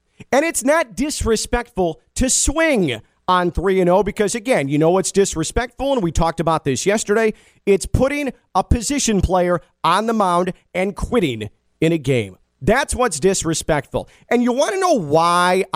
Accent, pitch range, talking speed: American, 170-235 Hz, 160 wpm